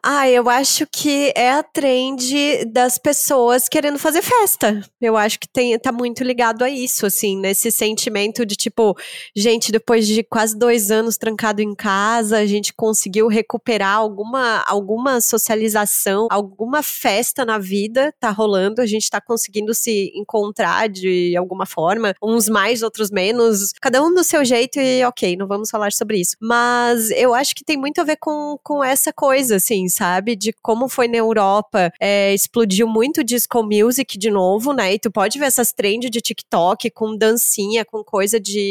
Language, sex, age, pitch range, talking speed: Portuguese, female, 20-39, 205-255 Hz, 175 wpm